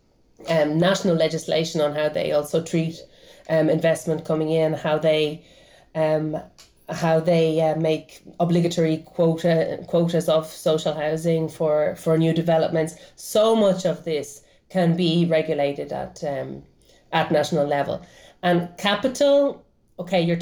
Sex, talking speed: female, 130 wpm